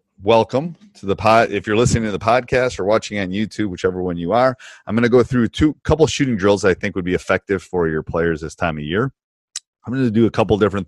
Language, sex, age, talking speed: English, male, 30-49, 270 wpm